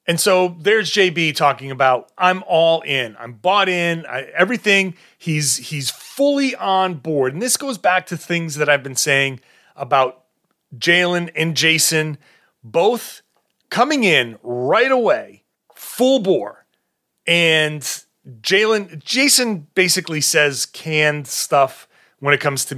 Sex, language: male, English